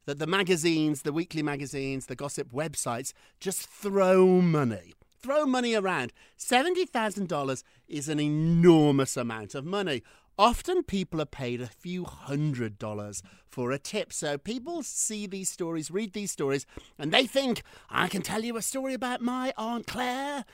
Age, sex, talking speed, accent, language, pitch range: 50-69, male, 160 wpm, British, English, 140-220 Hz